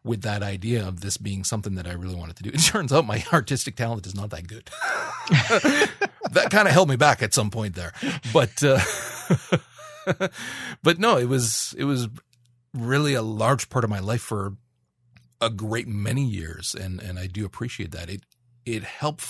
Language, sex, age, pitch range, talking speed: English, male, 40-59, 100-125 Hz, 195 wpm